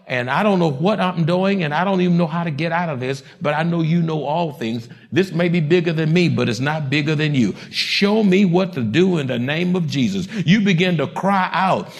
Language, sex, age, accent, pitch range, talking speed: English, male, 60-79, American, 140-185 Hz, 260 wpm